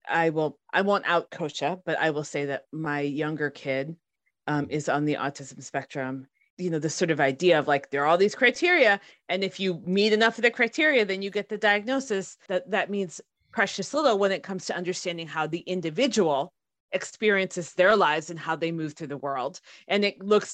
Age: 30-49